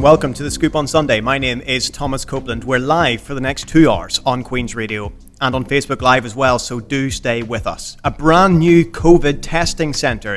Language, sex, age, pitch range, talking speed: English, male, 30-49, 115-145 Hz, 220 wpm